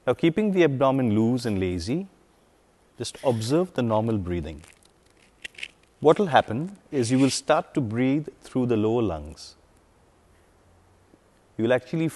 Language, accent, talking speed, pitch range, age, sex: English, Indian, 140 wpm, 100-145 Hz, 30-49, male